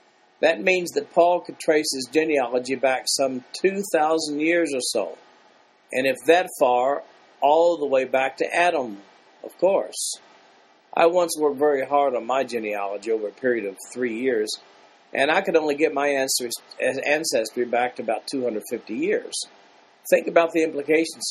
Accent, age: American, 50-69